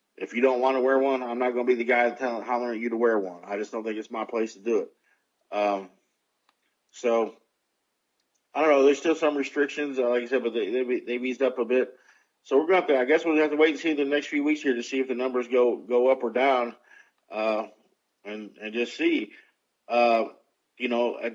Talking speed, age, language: 255 wpm, 50-69, English